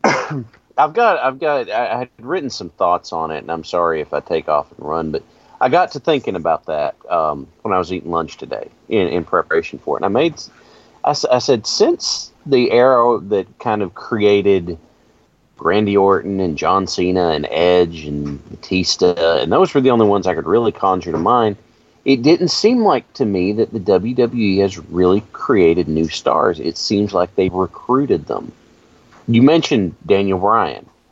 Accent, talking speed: American, 190 wpm